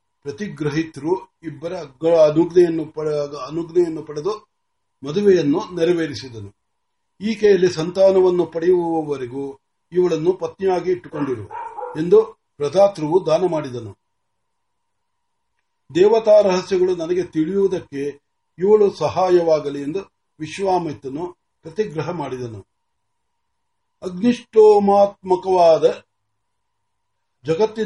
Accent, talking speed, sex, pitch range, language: native, 35 wpm, male, 160-230 Hz, Marathi